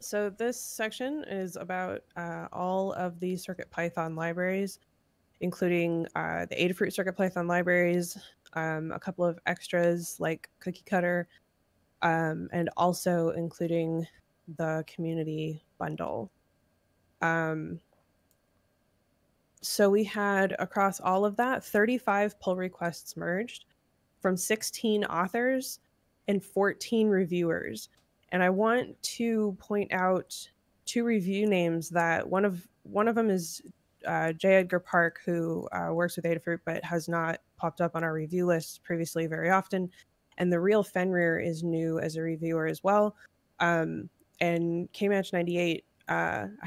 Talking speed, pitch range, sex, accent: 130 wpm, 165-195 Hz, female, American